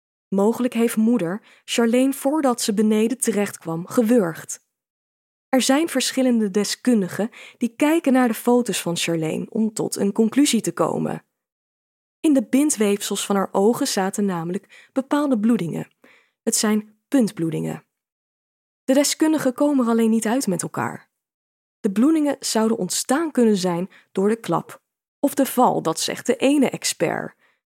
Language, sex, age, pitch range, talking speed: Dutch, female, 20-39, 195-255 Hz, 140 wpm